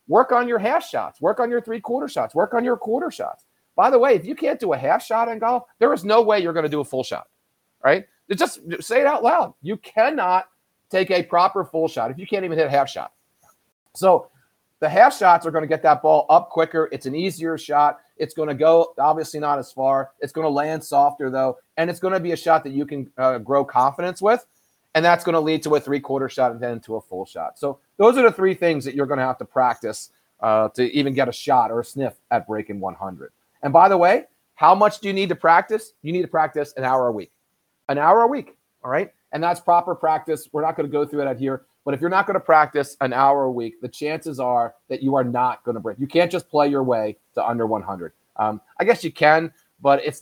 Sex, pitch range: male, 135-180 Hz